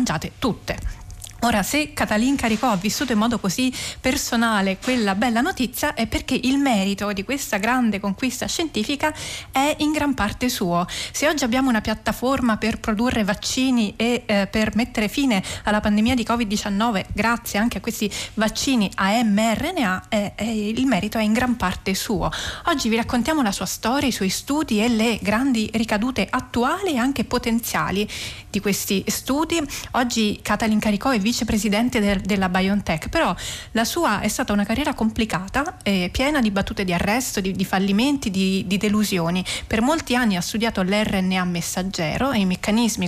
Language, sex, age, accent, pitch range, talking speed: Italian, female, 30-49, native, 200-250 Hz, 165 wpm